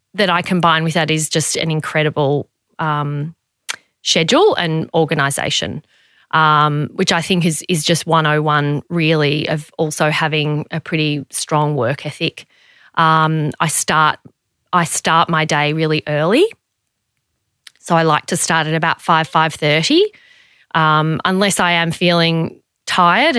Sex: female